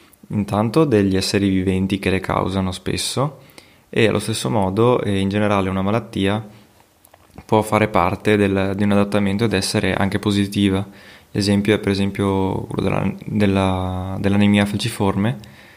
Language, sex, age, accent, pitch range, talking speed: Italian, male, 20-39, native, 95-105 Hz, 135 wpm